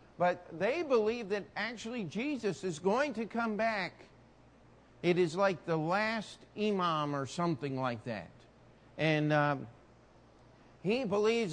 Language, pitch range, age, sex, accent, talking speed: English, 170-250 Hz, 50-69, male, American, 130 wpm